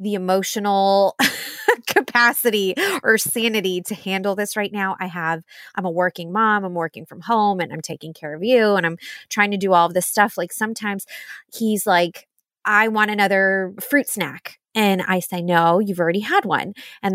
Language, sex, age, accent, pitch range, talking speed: English, female, 20-39, American, 180-230 Hz, 185 wpm